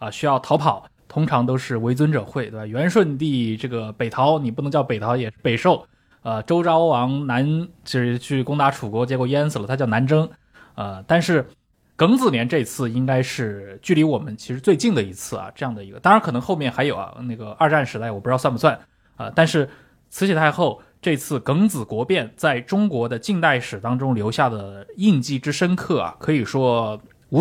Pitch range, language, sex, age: 115-155 Hz, Chinese, male, 20-39